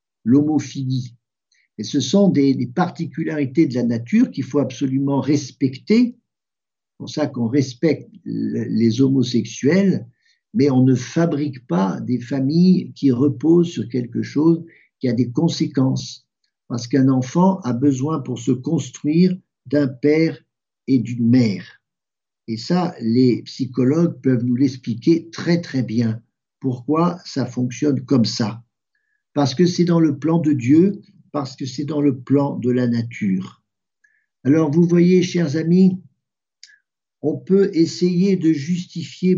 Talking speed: 140 wpm